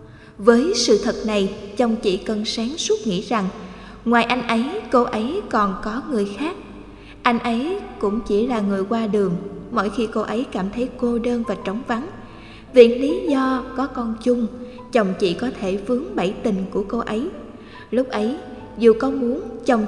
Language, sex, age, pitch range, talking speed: Vietnamese, female, 20-39, 205-250 Hz, 185 wpm